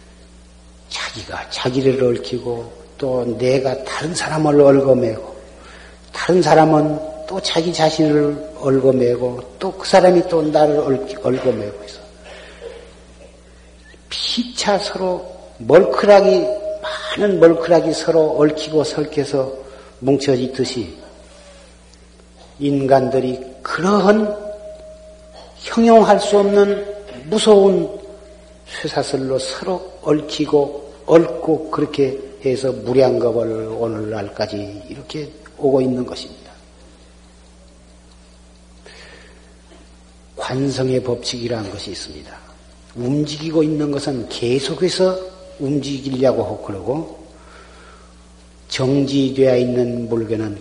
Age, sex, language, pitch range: 50-69, male, Korean, 110-160 Hz